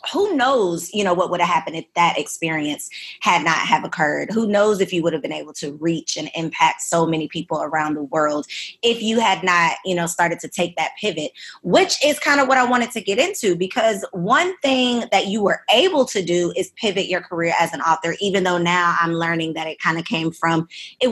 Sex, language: female, English